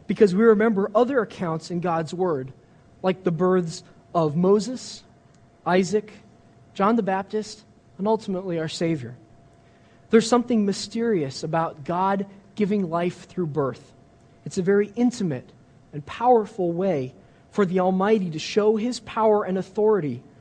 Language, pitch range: English, 155-215 Hz